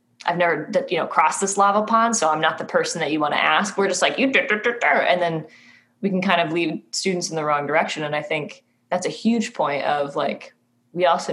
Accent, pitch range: American, 155-220 Hz